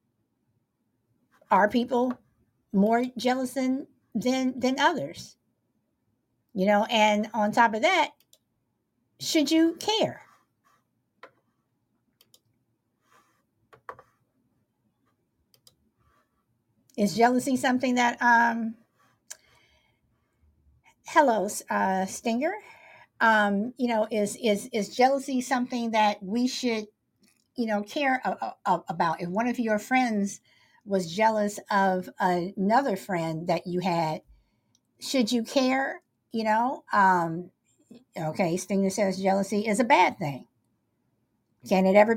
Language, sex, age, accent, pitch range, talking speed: English, female, 60-79, American, 185-245 Hz, 100 wpm